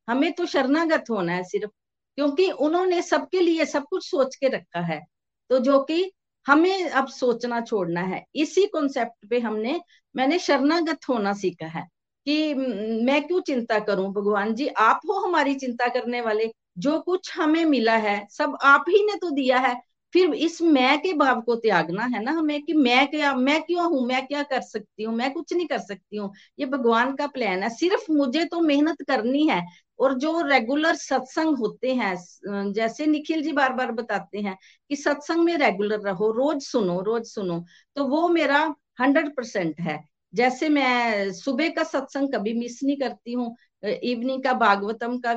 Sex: female